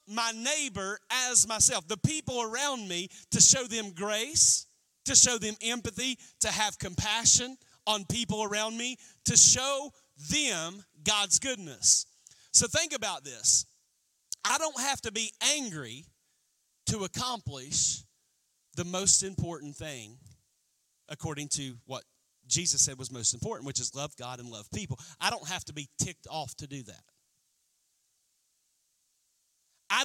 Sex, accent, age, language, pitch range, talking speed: male, American, 40-59, English, 155-245 Hz, 140 wpm